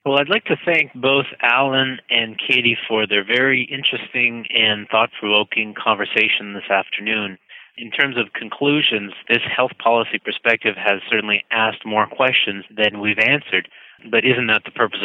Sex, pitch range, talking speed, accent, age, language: male, 105-130 Hz, 155 wpm, American, 30-49, English